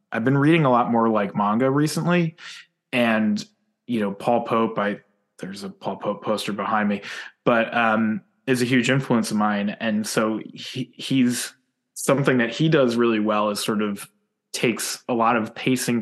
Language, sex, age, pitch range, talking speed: English, male, 20-39, 105-125 Hz, 180 wpm